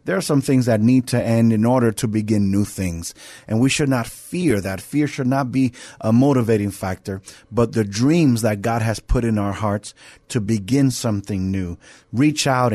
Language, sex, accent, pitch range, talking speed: English, male, American, 110-135 Hz, 205 wpm